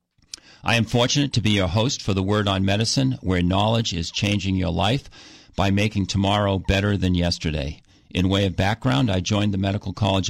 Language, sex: English, male